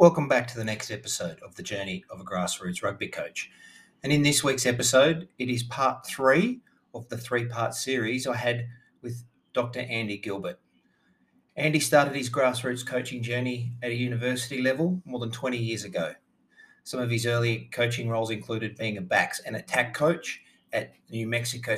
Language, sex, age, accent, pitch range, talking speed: English, male, 30-49, Australian, 115-140 Hz, 180 wpm